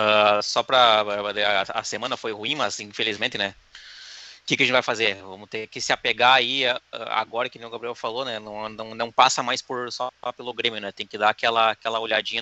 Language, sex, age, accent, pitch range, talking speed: Portuguese, male, 20-39, Brazilian, 110-130 Hz, 240 wpm